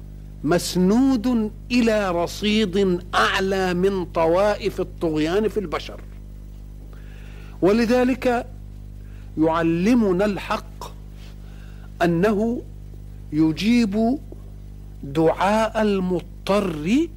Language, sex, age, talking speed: Arabic, male, 50-69, 55 wpm